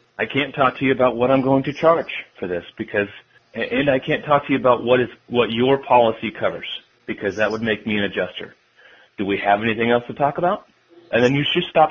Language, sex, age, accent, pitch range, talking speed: English, male, 30-49, American, 115-150 Hz, 235 wpm